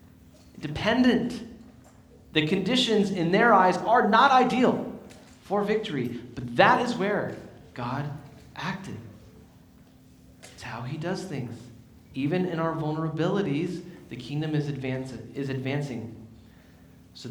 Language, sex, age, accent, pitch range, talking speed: English, male, 30-49, American, 125-170 Hz, 110 wpm